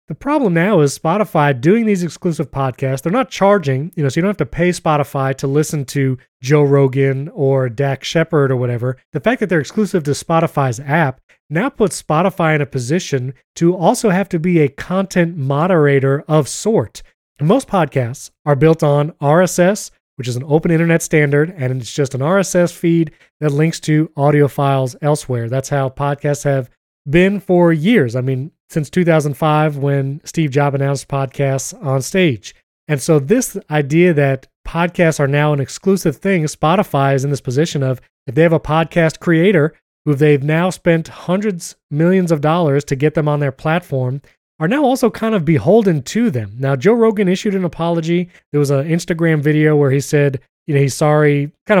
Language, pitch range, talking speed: English, 140-175 Hz, 185 wpm